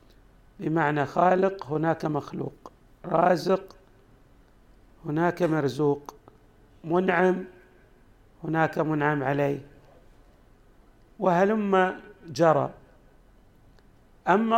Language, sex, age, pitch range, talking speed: Arabic, male, 50-69, 150-190 Hz, 60 wpm